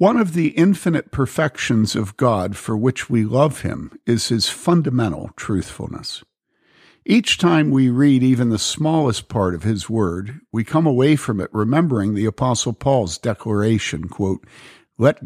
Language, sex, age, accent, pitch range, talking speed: English, male, 60-79, American, 105-135 Hz, 150 wpm